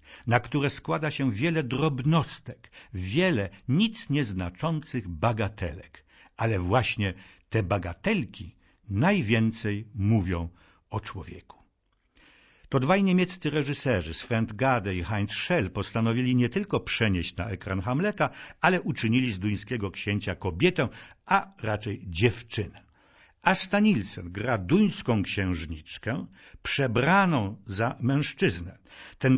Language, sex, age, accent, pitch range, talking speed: Polish, male, 60-79, native, 100-150 Hz, 105 wpm